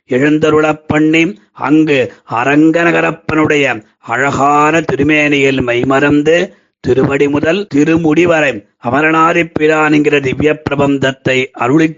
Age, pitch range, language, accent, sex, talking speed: 30-49, 130-155 Hz, Tamil, native, male, 70 wpm